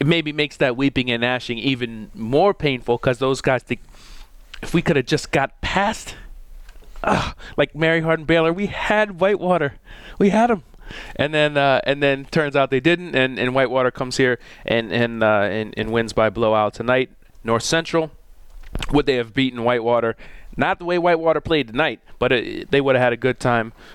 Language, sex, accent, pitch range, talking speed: English, male, American, 120-150 Hz, 195 wpm